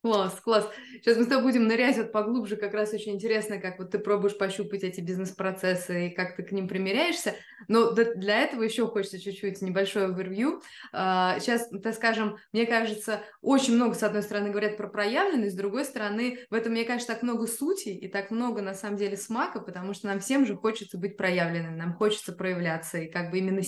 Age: 20-39